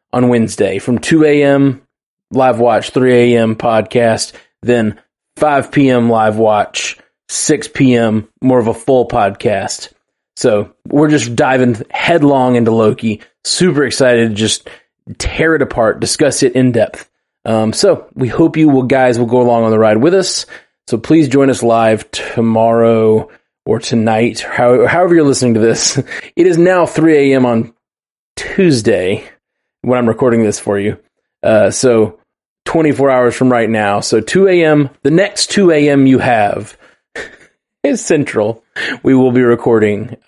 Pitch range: 110-140 Hz